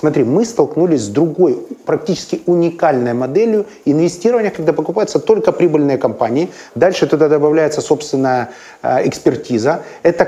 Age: 30-49